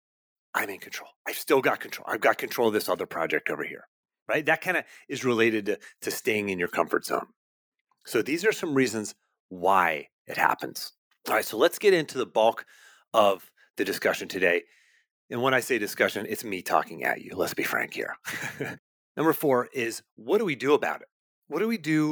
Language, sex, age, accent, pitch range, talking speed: English, male, 30-49, American, 110-160 Hz, 205 wpm